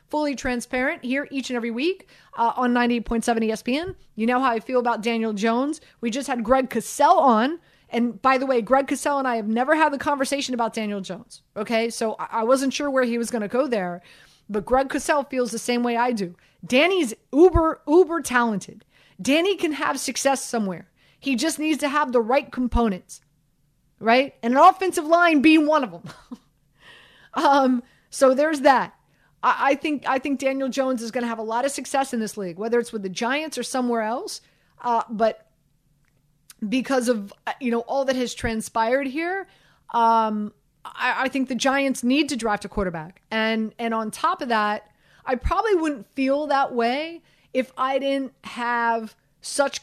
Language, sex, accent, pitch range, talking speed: English, female, American, 220-275 Hz, 195 wpm